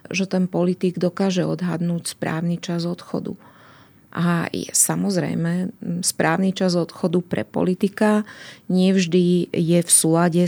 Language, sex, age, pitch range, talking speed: Slovak, female, 30-49, 170-190 Hz, 115 wpm